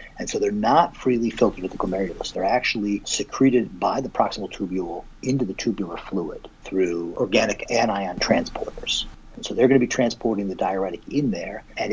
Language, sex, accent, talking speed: English, male, American, 175 wpm